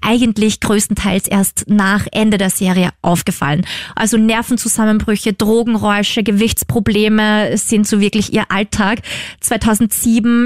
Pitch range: 210-235 Hz